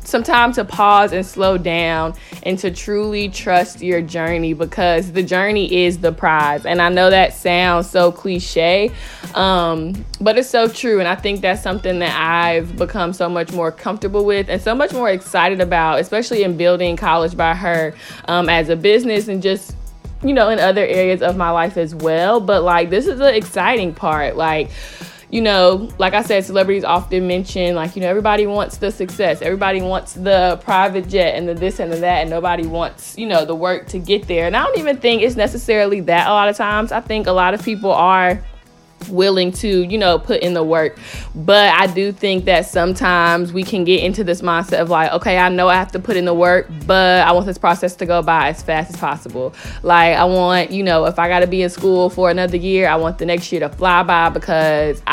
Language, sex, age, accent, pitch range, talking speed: English, female, 20-39, American, 170-195 Hz, 220 wpm